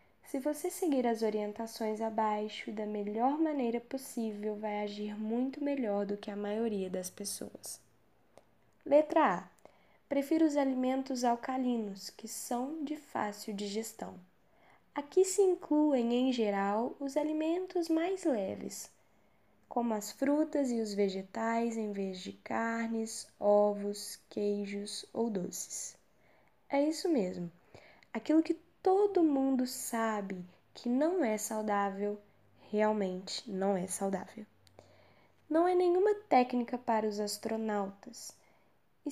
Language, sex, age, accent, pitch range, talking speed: Portuguese, female, 10-29, Brazilian, 205-275 Hz, 120 wpm